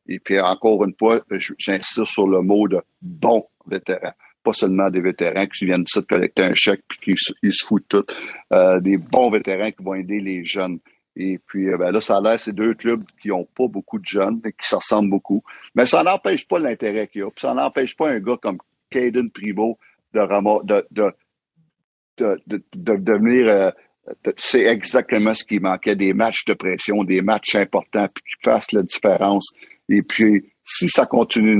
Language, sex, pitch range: French, male, 95-110 Hz